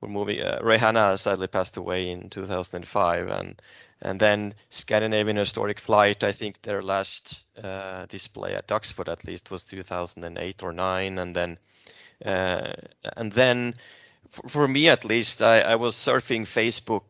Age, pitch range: 20-39, 95-110 Hz